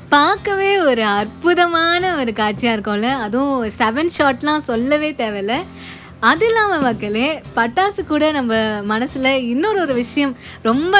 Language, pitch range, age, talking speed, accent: Tamil, 225-300 Hz, 20-39, 120 wpm, native